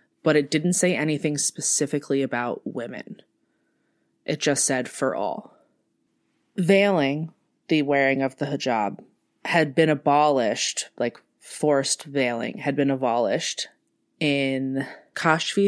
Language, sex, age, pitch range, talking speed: English, female, 20-39, 135-160 Hz, 115 wpm